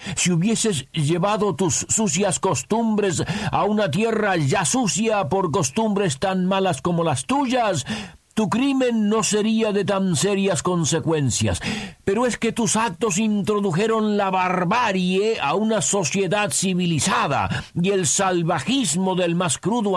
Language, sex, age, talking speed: Spanish, male, 50-69, 130 wpm